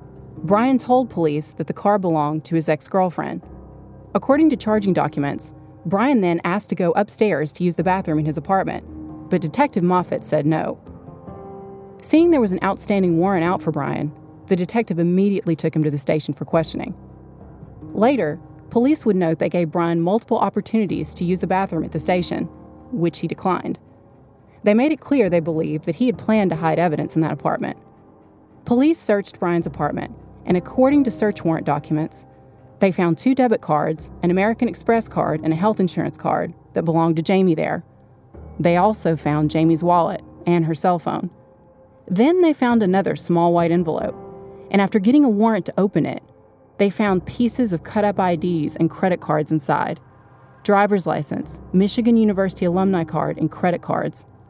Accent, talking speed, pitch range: American, 175 wpm, 155-205 Hz